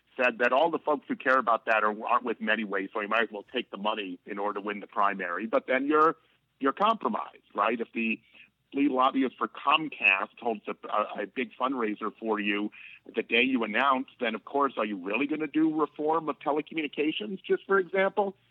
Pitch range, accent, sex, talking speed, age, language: 110-145 Hz, American, male, 210 wpm, 50-69, English